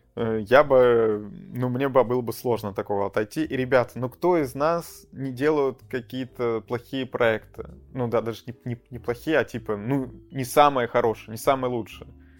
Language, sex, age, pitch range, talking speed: Russian, male, 20-39, 115-145 Hz, 180 wpm